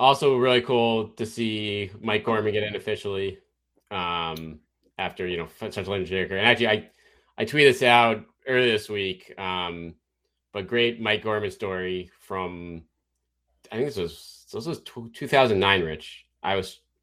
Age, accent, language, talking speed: 30-49, American, English, 150 wpm